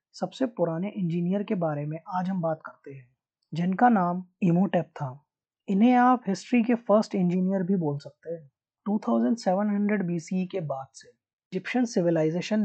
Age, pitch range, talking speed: 20-39, 155-205 Hz, 145 wpm